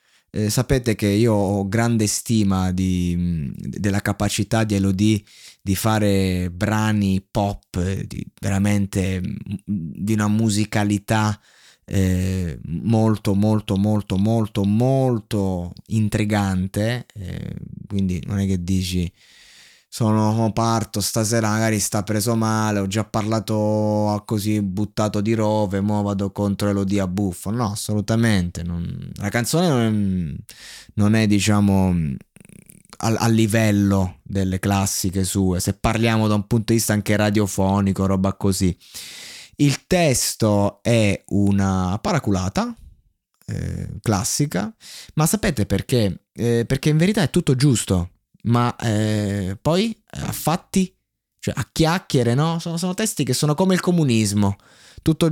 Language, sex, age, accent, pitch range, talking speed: Italian, male, 20-39, native, 100-115 Hz, 120 wpm